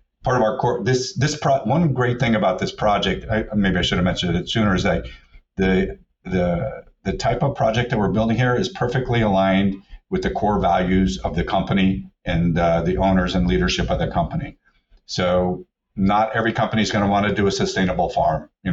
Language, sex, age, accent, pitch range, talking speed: English, male, 50-69, American, 90-110 Hz, 210 wpm